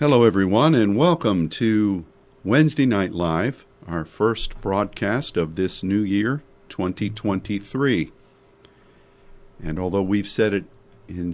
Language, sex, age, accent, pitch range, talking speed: English, male, 50-69, American, 95-115 Hz, 115 wpm